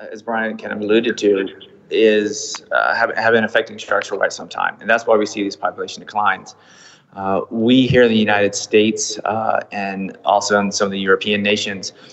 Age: 30-49